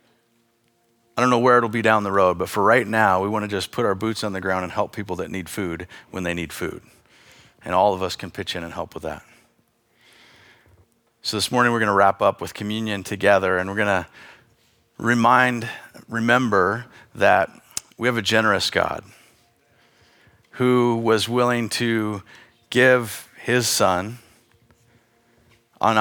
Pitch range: 100-120 Hz